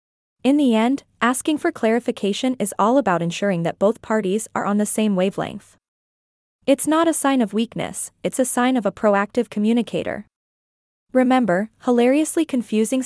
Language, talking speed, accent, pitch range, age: English, 155 wpm, American, 200-250 Hz, 20-39